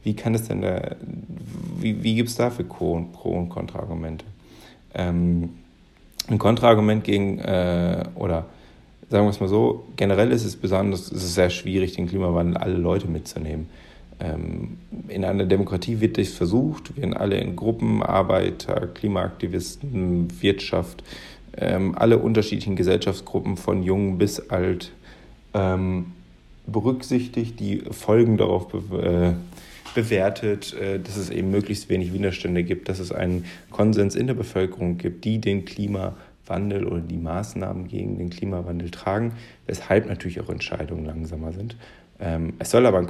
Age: 40-59